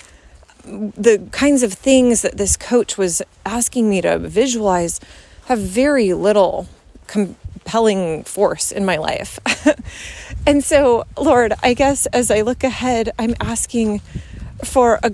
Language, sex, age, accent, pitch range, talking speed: English, female, 30-49, American, 220-260 Hz, 130 wpm